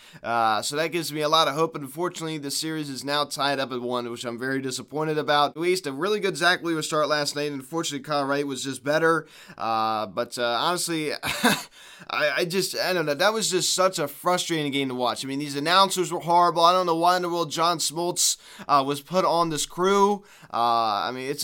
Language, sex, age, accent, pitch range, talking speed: English, male, 20-39, American, 145-175 Hz, 235 wpm